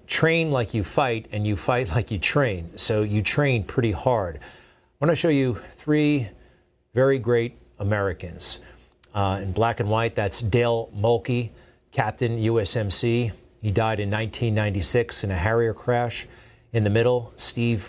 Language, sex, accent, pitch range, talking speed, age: English, male, American, 100-120 Hz, 150 wpm, 40-59